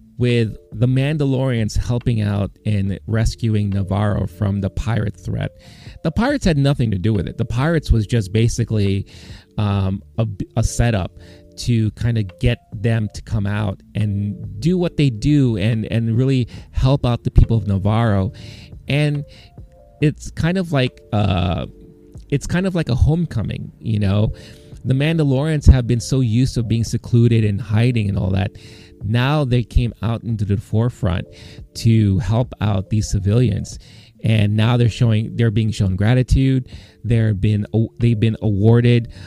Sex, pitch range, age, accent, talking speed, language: male, 105-125 Hz, 30-49, American, 160 wpm, English